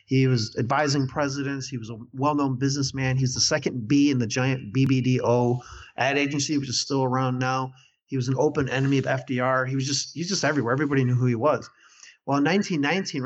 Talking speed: 200 wpm